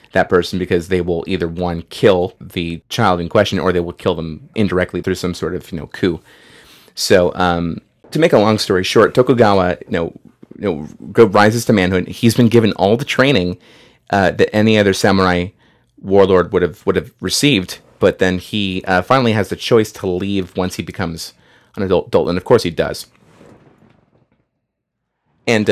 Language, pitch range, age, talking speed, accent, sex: English, 90-110 Hz, 30-49, 185 wpm, American, male